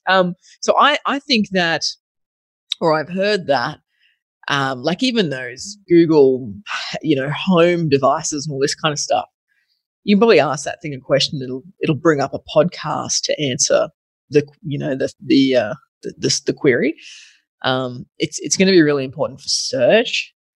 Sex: female